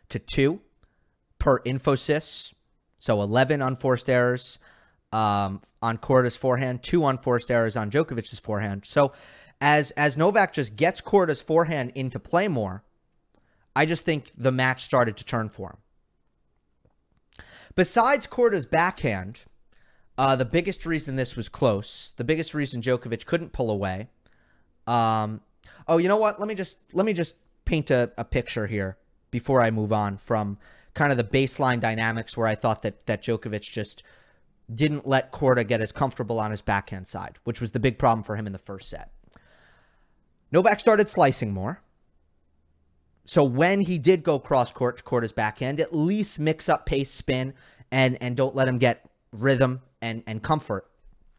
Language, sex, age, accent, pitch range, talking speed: English, male, 30-49, American, 110-150 Hz, 160 wpm